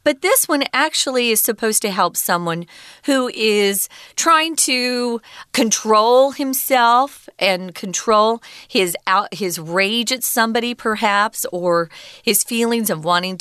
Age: 40-59